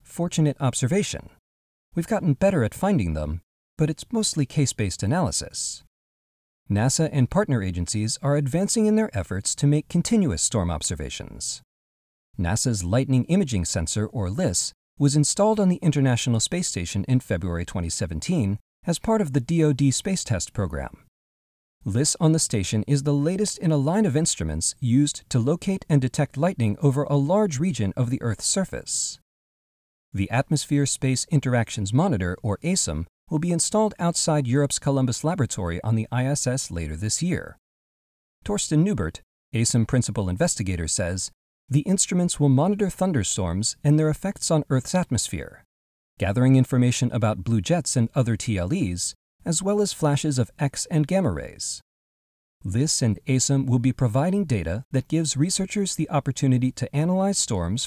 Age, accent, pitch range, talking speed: 40-59, American, 100-155 Hz, 150 wpm